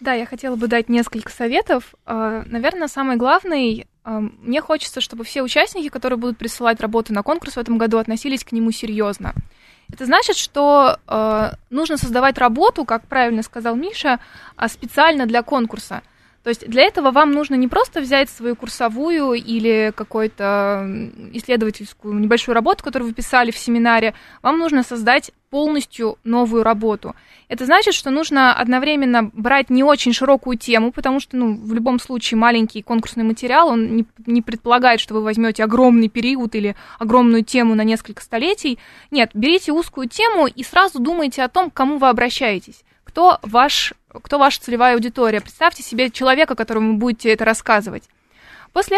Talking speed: 160 wpm